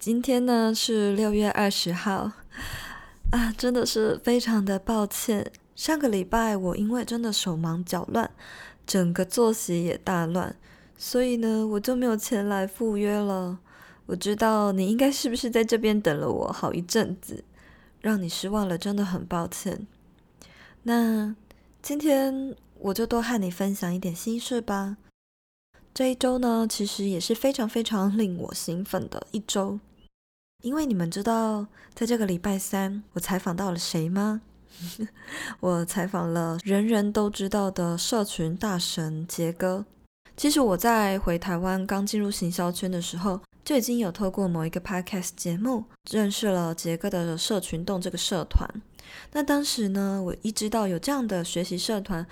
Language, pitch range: Chinese, 180-225 Hz